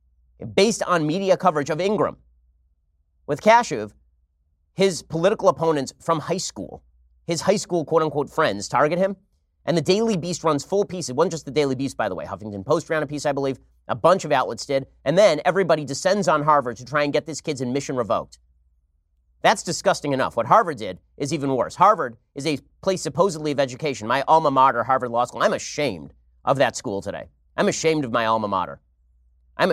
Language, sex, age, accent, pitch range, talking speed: English, male, 30-49, American, 120-160 Hz, 200 wpm